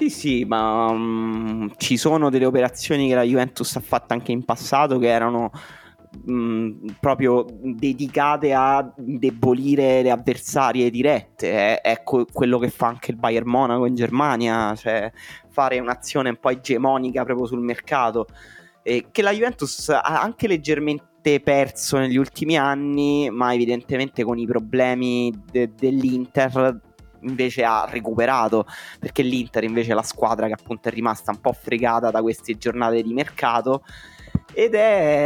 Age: 20-39